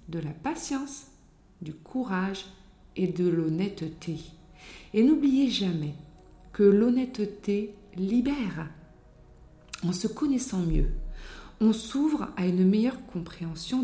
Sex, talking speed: female, 105 wpm